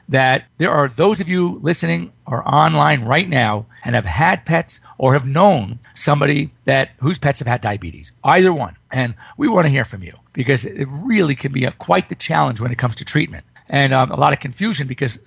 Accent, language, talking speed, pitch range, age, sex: American, English, 210 wpm, 120-165 Hz, 50-69, male